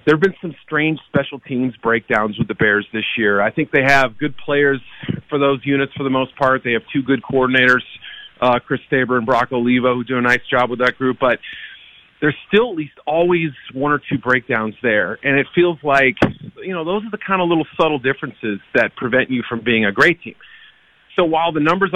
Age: 40-59